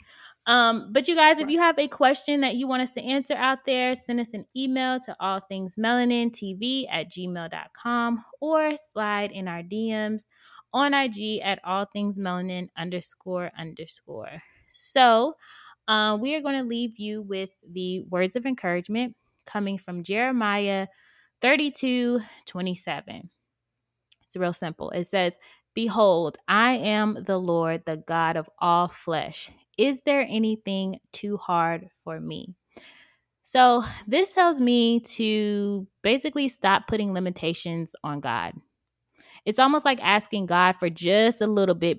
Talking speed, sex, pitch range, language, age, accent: 135 wpm, female, 180-245 Hz, English, 20-39, American